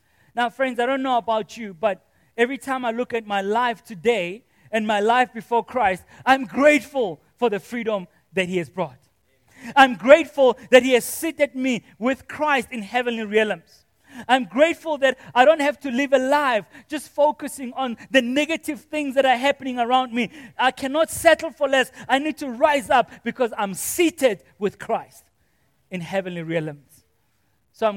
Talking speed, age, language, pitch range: 180 wpm, 30-49, English, 180-255 Hz